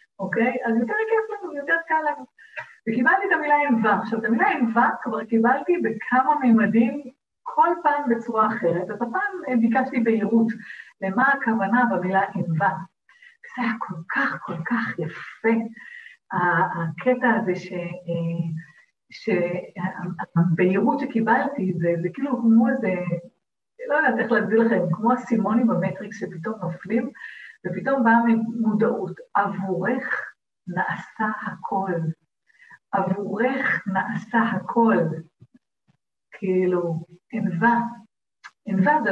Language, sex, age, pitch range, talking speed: Hebrew, female, 50-69, 190-255 Hz, 110 wpm